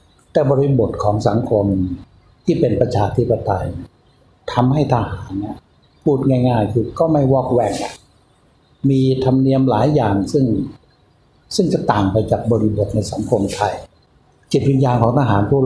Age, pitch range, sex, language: 60-79, 105-130 Hz, male, Thai